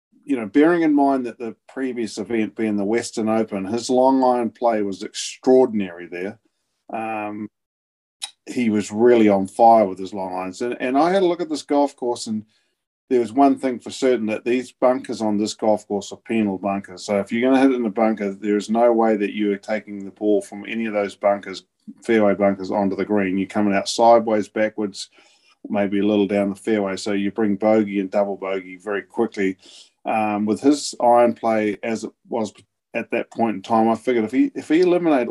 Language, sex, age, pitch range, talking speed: English, male, 40-59, 100-120 Hz, 220 wpm